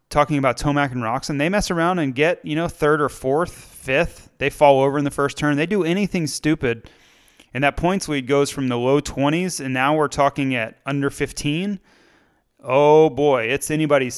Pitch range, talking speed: 125-155 Hz, 200 wpm